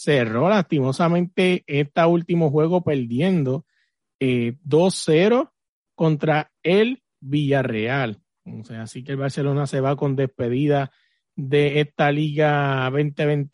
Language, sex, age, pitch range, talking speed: Spanish, male, 30-49, 135-170 Hz, 110 wpm